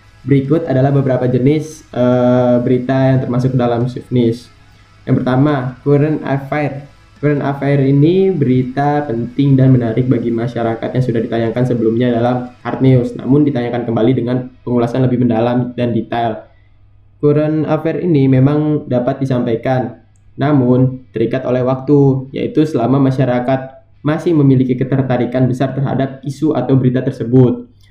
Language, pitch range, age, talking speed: Indonesian, 120-135 Hz, 10-29, 135 wpm